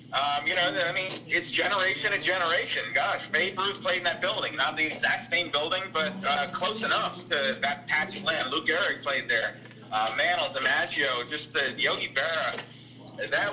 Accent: American